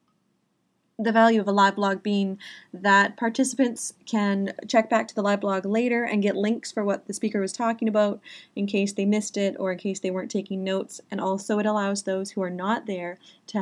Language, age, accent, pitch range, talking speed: English, 20-39, American, 190-225 Hz, 215 wpm